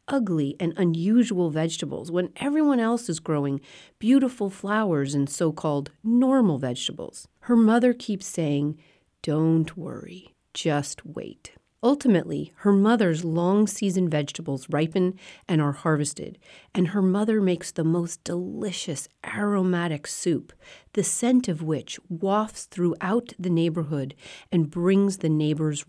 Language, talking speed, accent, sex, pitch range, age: English, 125 wpm, American, female, 155-205 Hz, 40-59